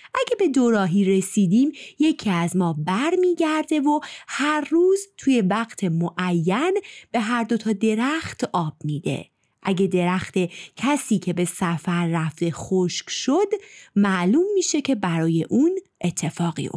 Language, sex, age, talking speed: Persian, female, 30-49, 130 wpm